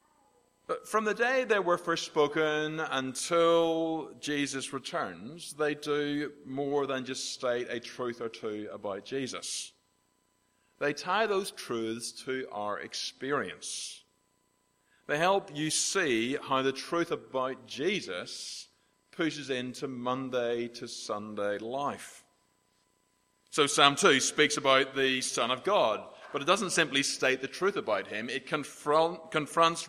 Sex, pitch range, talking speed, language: male, 130-160 Hz, 130 wpm, English